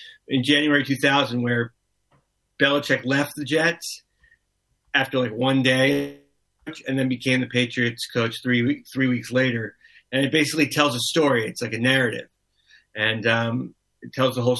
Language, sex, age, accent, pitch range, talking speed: English, male, 50-69, American, 120-140 Hz, 155 wpm